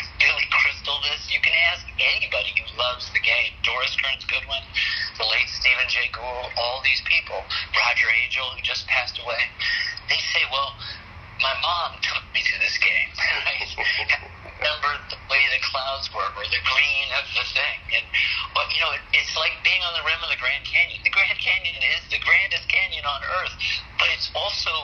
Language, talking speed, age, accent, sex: English, 185 wpm, 50-69, American, male